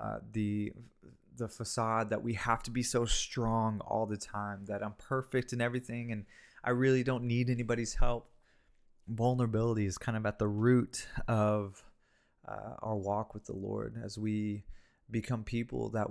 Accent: American